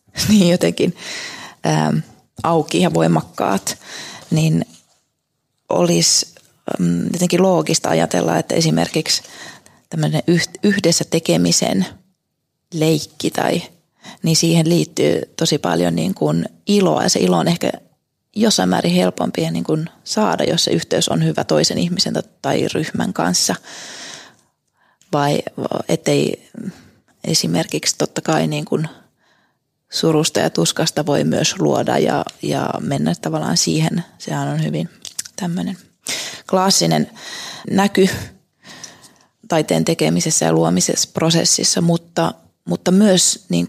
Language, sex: Finnish, female